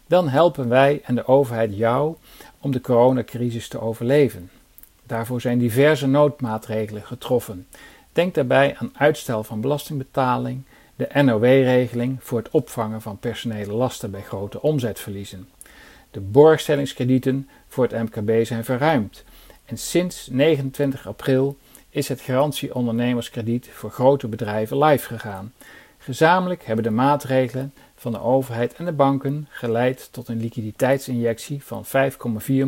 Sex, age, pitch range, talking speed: male, 50-69, 115-145 Hz, 125 wpm